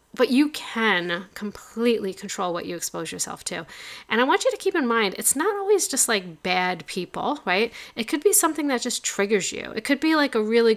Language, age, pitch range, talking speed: English, 40-59, 195-250 Hz, 225 wpm